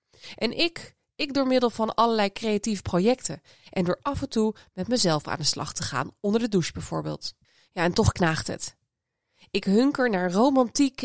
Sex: female